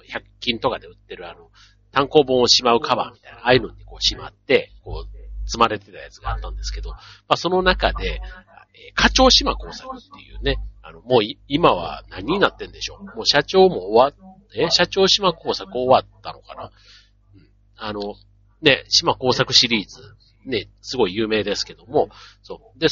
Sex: male